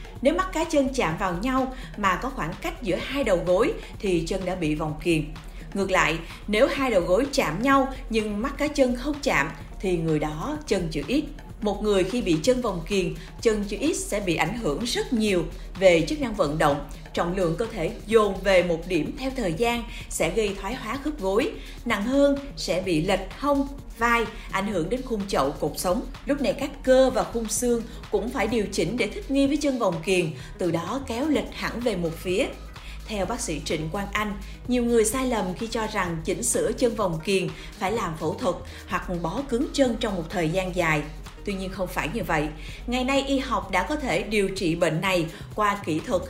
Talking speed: 220 wpm